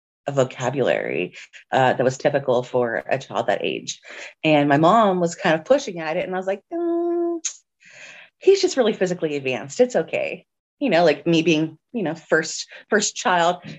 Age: 30-49